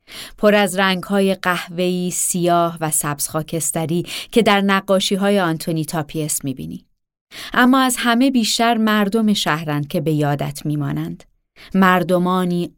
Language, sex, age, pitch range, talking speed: Persian, female, 30-49, 160-205 Hz, 115 wpm